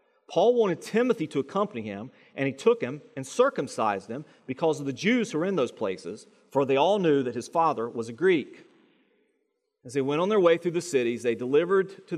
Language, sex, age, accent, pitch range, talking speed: English, male, 40-59, American, 140-230 Hz, 215 wpm